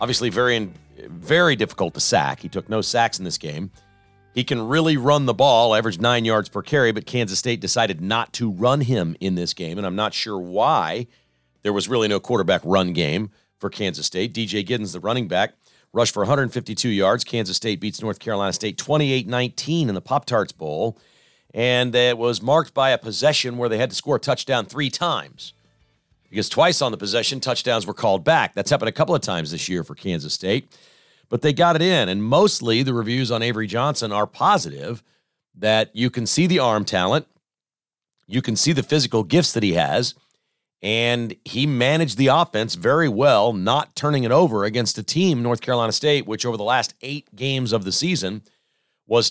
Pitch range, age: 105-135 Hz, 40-59